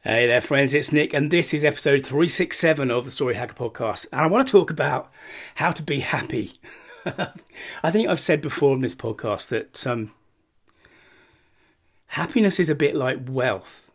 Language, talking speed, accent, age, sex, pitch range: English, 175 wpm, British, 30-49, male, 125-155 Hz